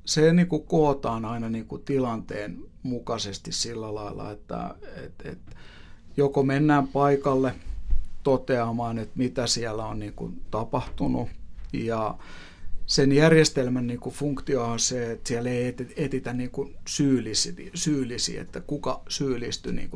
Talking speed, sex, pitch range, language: 100 wpm, male, 105-135 Hz, Finnish